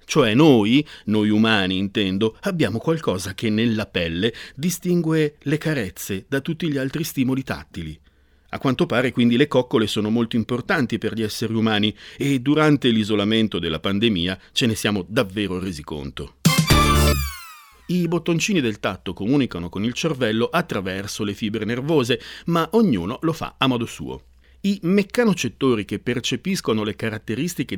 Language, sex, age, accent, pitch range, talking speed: Italian, male, 50-69, native, 105-155 Hz, 145 wpm